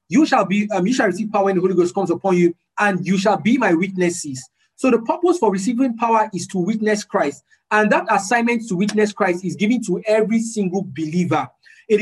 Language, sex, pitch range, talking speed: English, male, 180-230 Hz, 220 wpm